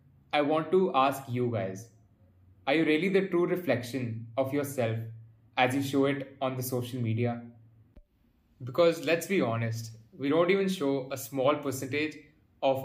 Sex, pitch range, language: male, 115-140 Hz, English